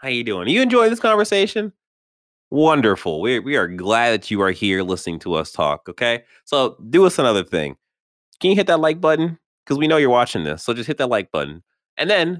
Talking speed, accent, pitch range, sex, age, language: 225 wpm, American, 95-140 Hz, male, 20-39, English